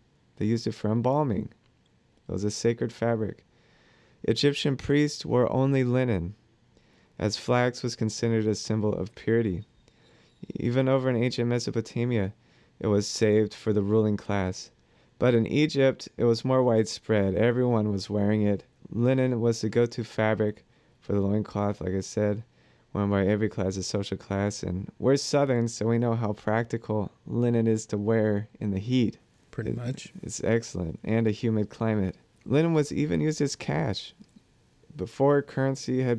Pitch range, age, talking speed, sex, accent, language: 105-125 Hz, 30-49, 160 wpm, male, American, English